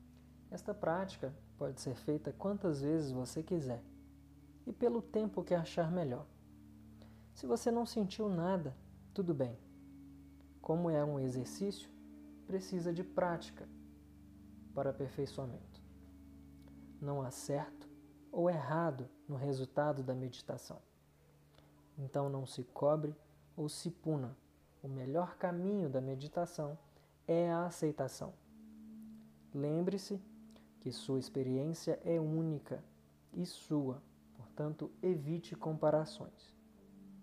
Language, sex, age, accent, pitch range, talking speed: Portuguese, male, 20-39, Brazilian, 100-165 Hz, 105 wpm